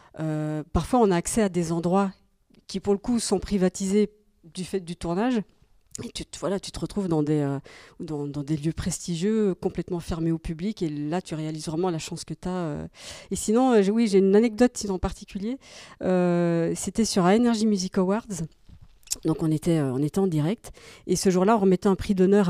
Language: French